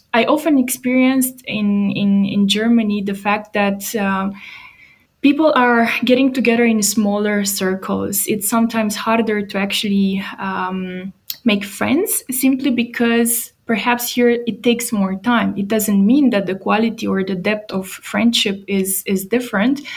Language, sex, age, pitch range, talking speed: English, female, 20-39, 195-235 Hz, 140 wpm